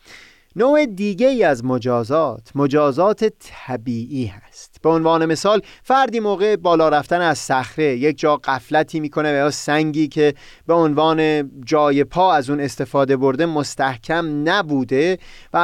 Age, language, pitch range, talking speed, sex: 30-49, Persian, 130-170 Hz, 135 wpm, male